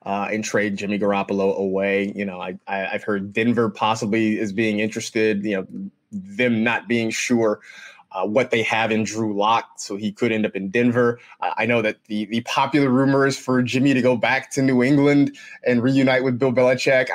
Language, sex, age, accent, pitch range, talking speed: English, male, 20-39, American, 105-130 Hz, 205 wpm